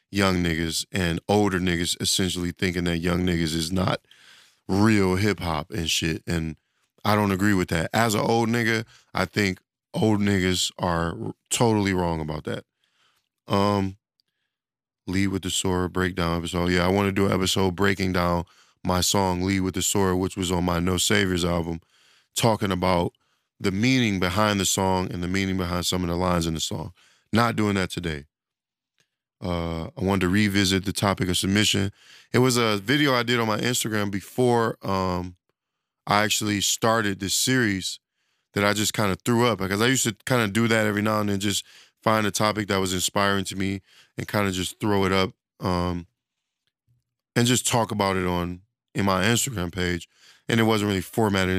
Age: 20-39